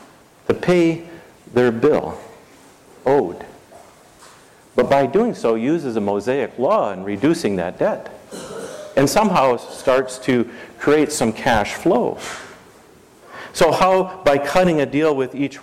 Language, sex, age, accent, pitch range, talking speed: English, male, 50-69, American, 110-160 Hz, 125 wpm